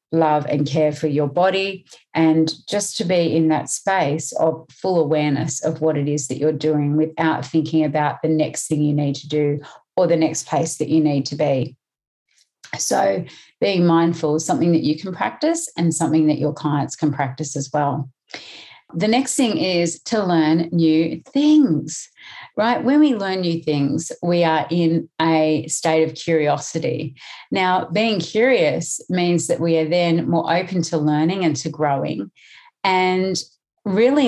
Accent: Australian